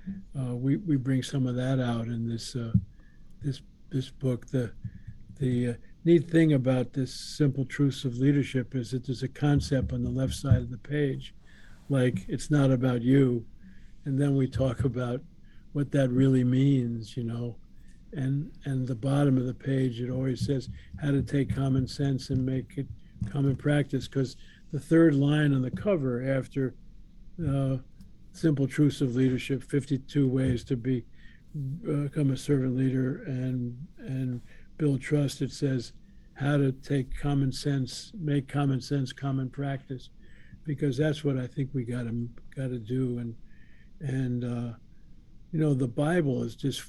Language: English